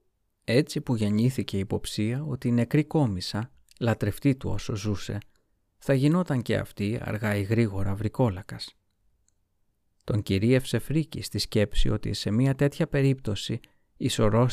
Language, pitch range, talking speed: Greek, 100-125 Hz, 135 wpm